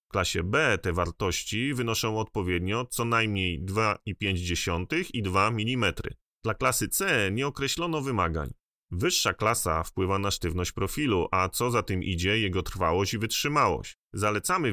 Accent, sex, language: native, male, Polish